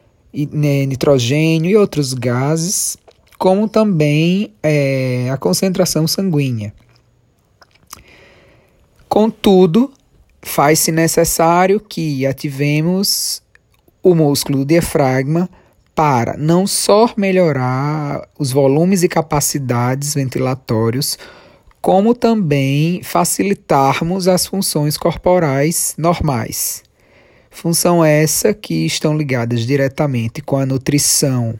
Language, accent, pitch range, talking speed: Portuguese, Brazilian, 135-180 Hz, 85 wpm